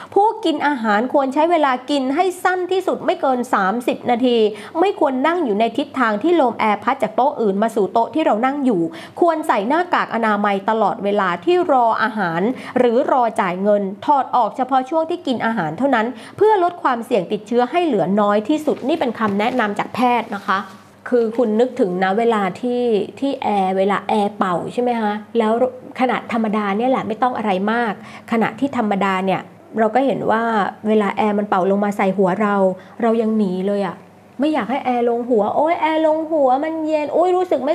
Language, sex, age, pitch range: Thai, female, 20-39, 215-275 Hz